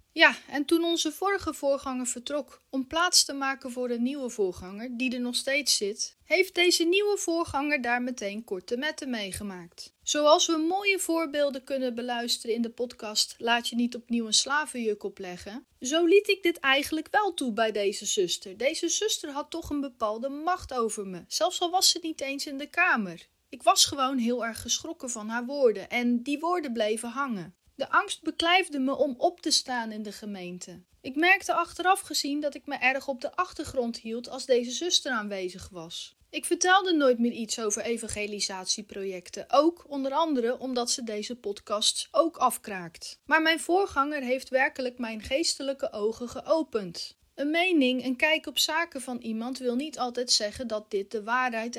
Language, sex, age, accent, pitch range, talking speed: Dutch, female, 30-49, Dutch, 230-315 Hz, 180 wpm